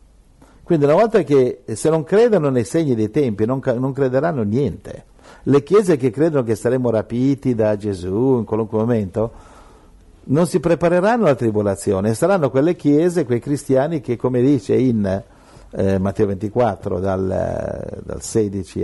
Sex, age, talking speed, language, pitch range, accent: male, 60-79, 150 wpm, Italian, 95-130 Hz, native